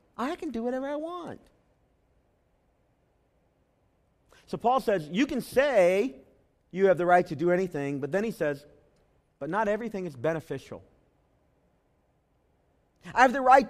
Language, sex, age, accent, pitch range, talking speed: English, male, 40-59, American, 150-220 Hz, 140 wpm